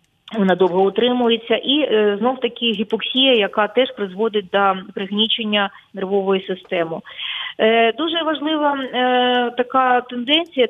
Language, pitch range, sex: Ukrainian, 215-255 Hz, female